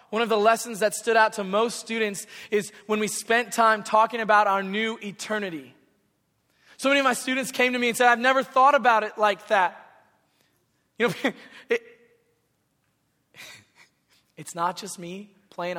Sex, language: male, English